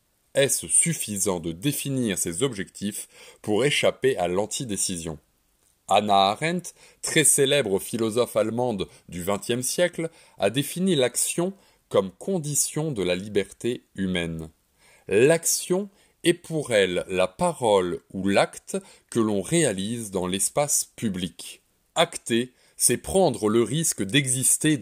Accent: French